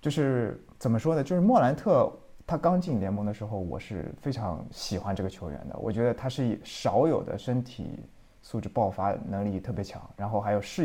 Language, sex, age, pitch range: Chinese, male, 20-39, 105-140 Hz